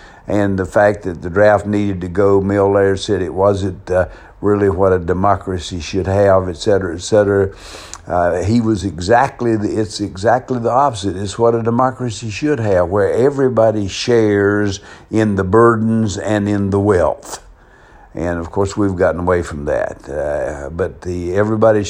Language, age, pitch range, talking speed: English, 60-79, 90-105 Hz, 165 wpm